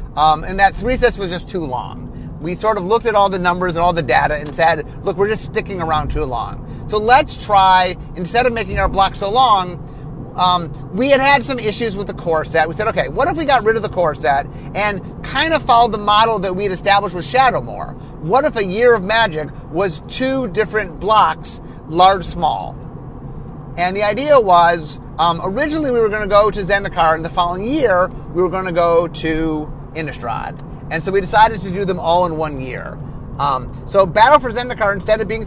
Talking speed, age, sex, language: 215 wpm, 30-49, male, English